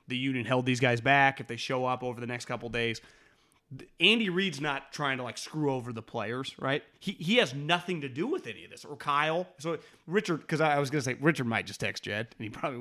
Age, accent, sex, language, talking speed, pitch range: 30-49, American, male, English, 255 wpm, 120-155 Hz